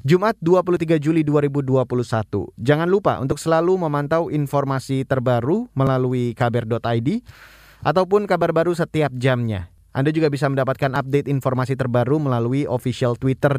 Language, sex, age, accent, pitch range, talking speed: Indonesian, male, 20-39, native, 125-165 Hz, 125 wpm